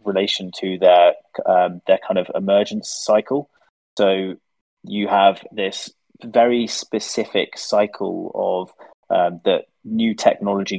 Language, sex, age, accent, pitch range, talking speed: English, male, 20-39, British, 95-115 Hz, 115 wpm